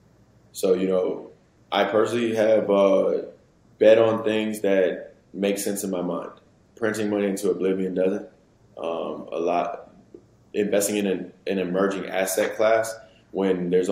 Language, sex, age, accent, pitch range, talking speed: English, male, 20-39, American, 90-105 Hz, 140 wpm